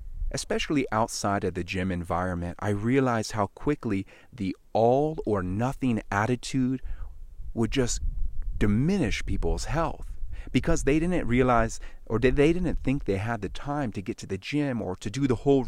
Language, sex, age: English, male, 30-49